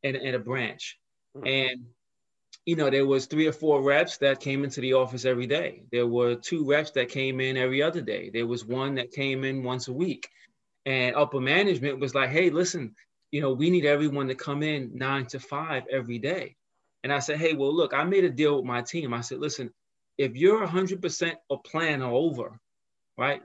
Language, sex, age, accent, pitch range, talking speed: English, male, 30-49, American, 130-160 Hz, 215 wpm